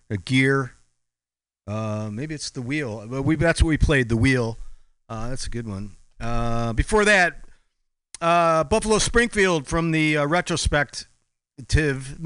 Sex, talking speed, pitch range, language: male, 140 wpm, 125-165 Hz, English